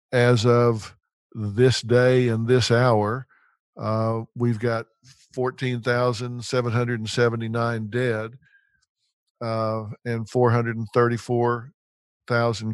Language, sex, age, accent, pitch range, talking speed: English, male, 50-69, American, 120-150 Hz, 70 wpm